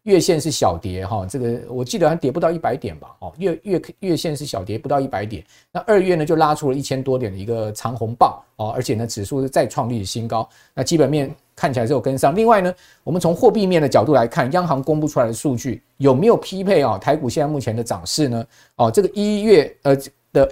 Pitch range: 120-165 Hz